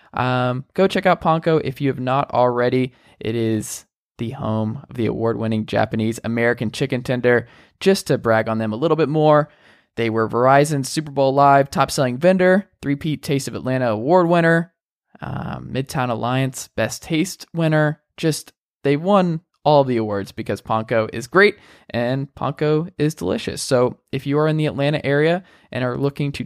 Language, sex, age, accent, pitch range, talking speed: English, male, 20-39, American, 125-165 Hz, 175 wpm